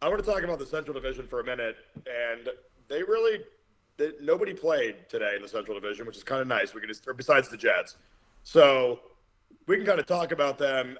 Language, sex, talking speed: English, male, 230 wpm